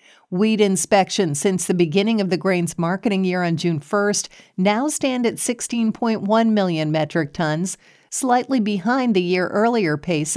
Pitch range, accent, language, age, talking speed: 165-205 Hz, American, English, 50-69, 145 wpm